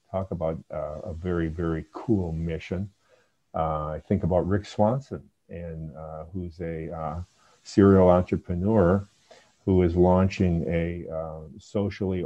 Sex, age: male, 50-69